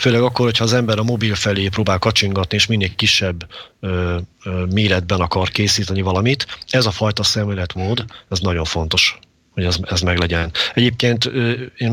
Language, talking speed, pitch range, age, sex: Hungarian, 170 wpm, 95-110 Hz, 40-59, male